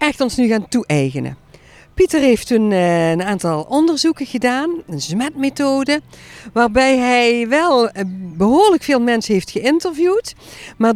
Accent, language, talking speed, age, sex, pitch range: Dutch, Dutch, 125 wpm, 50-69, female, 190-280 Hz